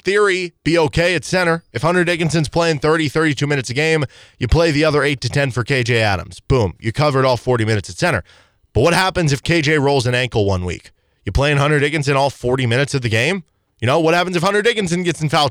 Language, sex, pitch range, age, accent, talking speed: English, male, 120-175 Hz, 20-39, American, 235 wpm